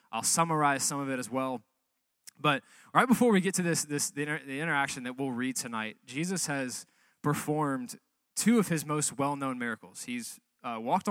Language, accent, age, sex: English, American, 20-39, male